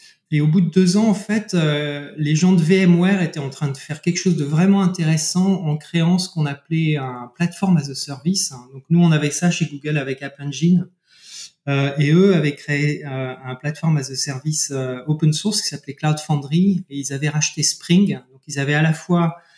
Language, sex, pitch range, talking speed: French, male, 140-175 Hz, 220 wpm